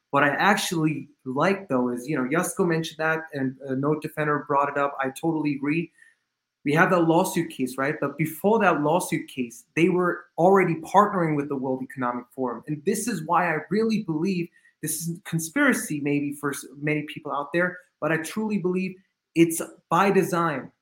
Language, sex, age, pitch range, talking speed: English, male, 20-39, 150-180 Hz, 185 wpm